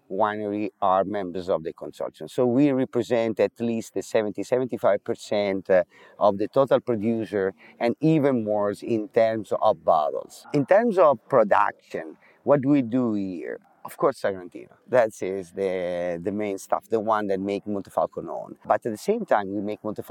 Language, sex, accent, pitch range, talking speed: English, male, Italian, 105-130 Hz, 165 wpm